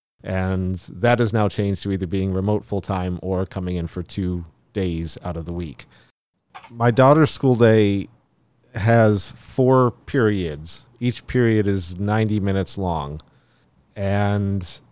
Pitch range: 95-115 Hz